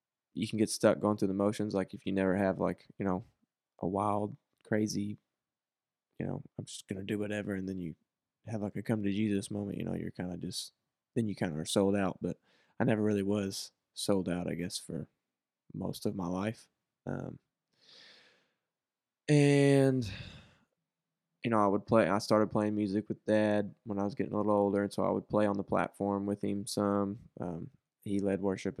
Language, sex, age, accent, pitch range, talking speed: English, male, 20-39, American, 100-110 Hz, 205 wpm